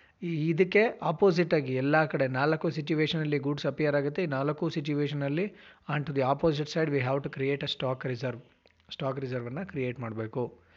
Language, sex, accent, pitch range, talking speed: Kannada, male, native, 135-170 Hz, 160 wpm